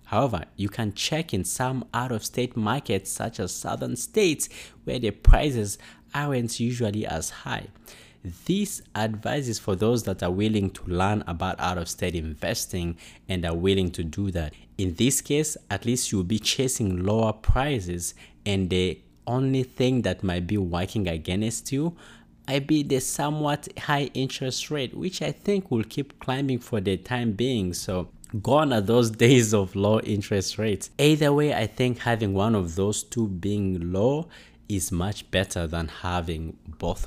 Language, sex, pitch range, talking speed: English, male, 90-125 Hz, 160 wpm